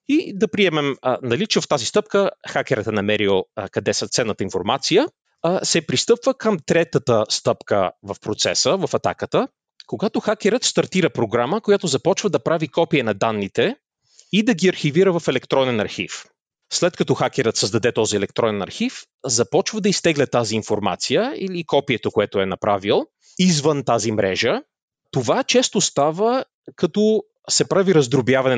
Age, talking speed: 30-49, 145 wpm